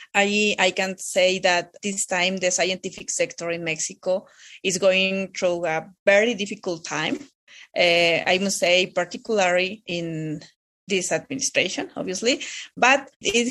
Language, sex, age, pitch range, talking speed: English, female, 30-49, 175-210 Hz, 135 wpm